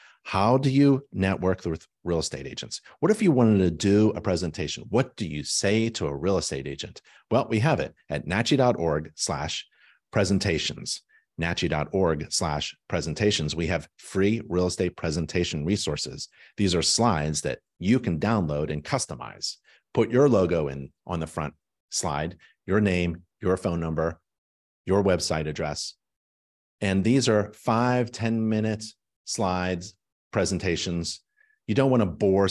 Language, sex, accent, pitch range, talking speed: English, male, American, 80-105 Hz, 145 wpm